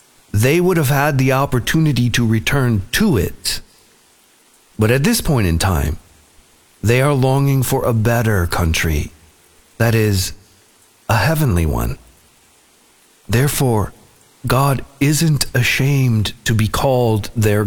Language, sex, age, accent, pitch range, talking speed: English, male, 50-69, American, 90-135 Hz, 120 wpm